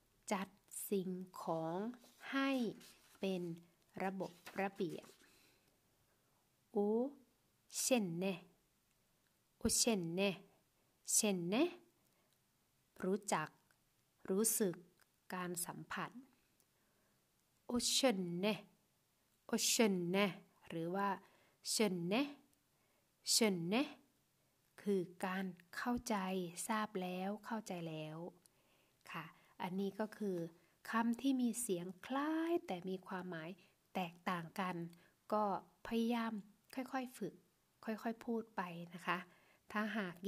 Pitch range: 180-220 Hz